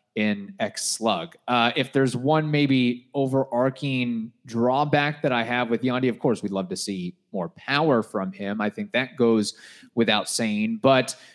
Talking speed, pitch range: 170 wpm, 115-135 Hz